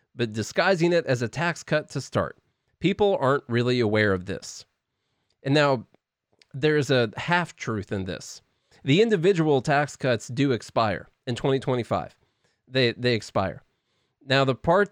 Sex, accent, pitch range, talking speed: male, American, 115-150 Hz, 150 wpm